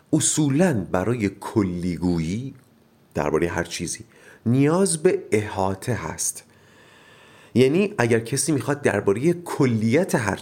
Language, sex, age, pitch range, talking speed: Persian, male, 40-59, 100-145 Hz, 100 wpm